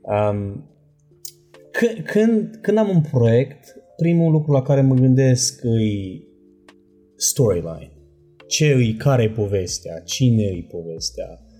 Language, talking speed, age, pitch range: Romanian, 105 wpm, 20-39, 100-145 Hz